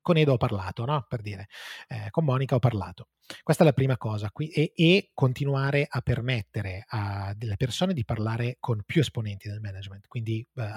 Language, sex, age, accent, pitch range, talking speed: Italian, male, 20-39, native, 110-140 Hz, 185 wpm